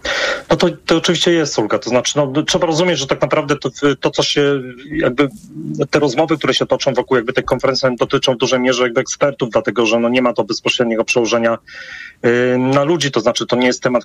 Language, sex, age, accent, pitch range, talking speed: Polish, male, 30-49, native, 115-135 Hz, 220 wpm